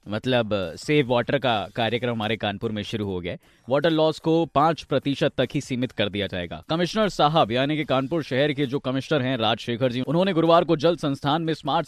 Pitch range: 120-155 Hz